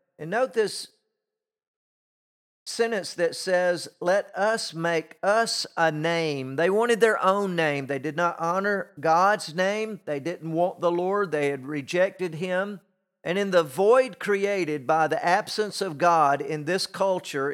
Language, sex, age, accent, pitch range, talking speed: English, male, 50-69, American, 150-190 Hz, 155 wpm